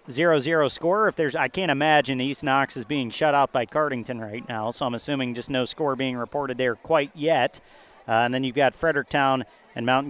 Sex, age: male, 40-59